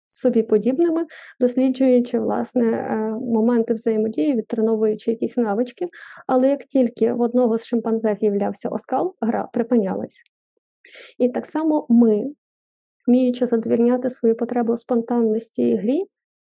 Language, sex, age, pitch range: Ukrainian, female, 20-39, 225-255 Hz